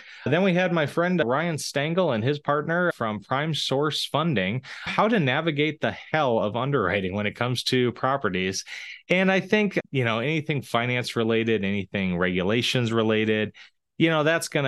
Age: 20-39